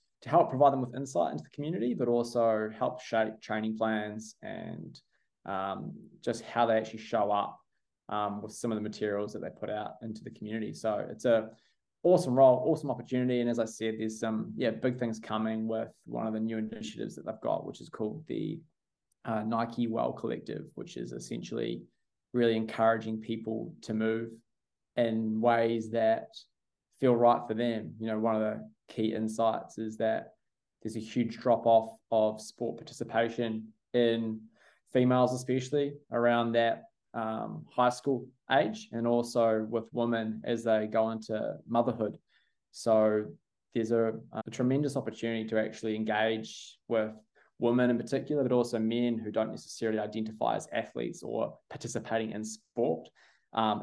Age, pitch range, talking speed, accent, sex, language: 20-39, 110-120 Hz, 165 wpm, Australian, male, English